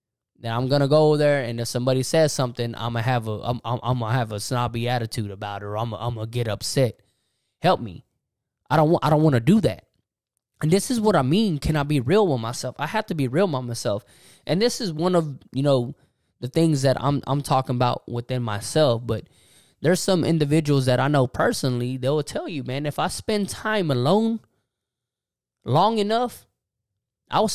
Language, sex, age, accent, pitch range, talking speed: English, male, 20-39, American, 120-160 Hz, 210 wpm